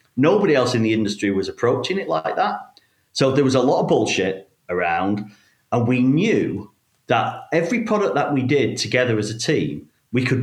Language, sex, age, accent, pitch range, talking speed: English, male, 40-59, British, 105-130 Hz, 190 wpm